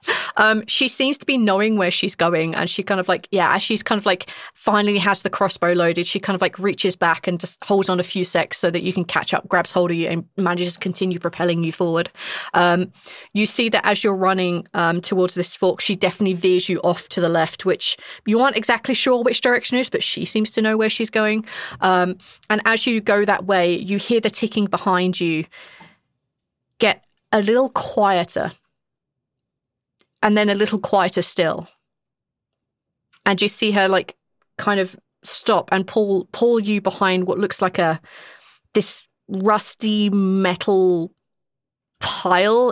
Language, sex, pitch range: English, female, 175-210 Hz